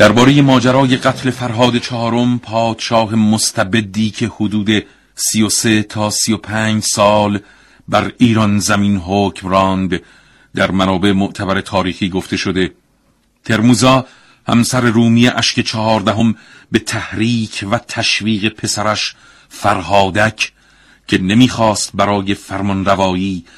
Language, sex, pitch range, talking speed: Persian, male, 95-110 Hz, 95 wpm